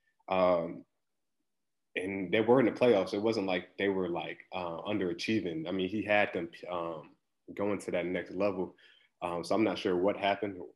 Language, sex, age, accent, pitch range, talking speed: English, male, 20-39, American, 90-100 Hz, 185 wpm